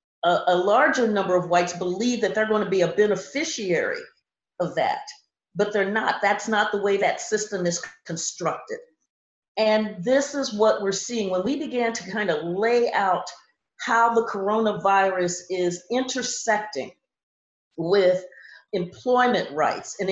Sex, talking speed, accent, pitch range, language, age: female, 145 wpm, American, 185-245 Hz, English, 50-69